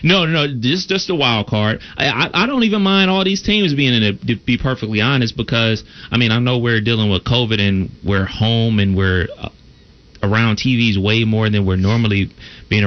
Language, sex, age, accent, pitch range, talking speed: English, male, 30-49, American, 100-130 Hz, 215 wpm